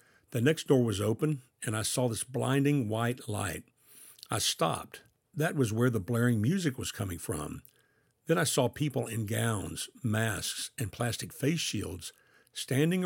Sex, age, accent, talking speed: male, 60-79, American, 160 wpm